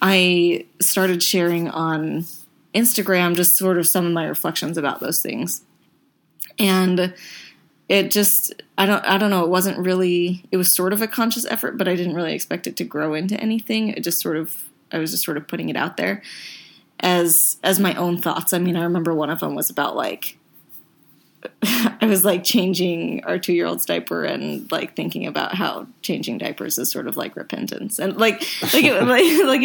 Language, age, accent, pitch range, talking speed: English, 20-39, American, 170-200 Hz, 190 wpm